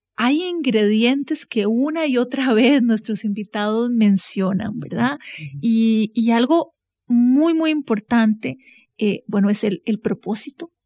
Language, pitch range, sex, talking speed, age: Spanish, 215-260 Hz, female, 125 wpm, 30-49